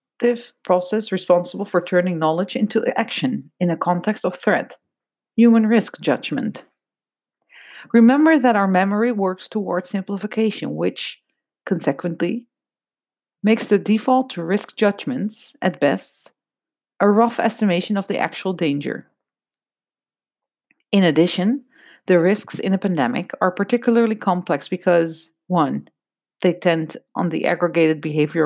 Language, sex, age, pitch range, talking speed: English, female, 40-59, 175-235 Hz, 120 wpm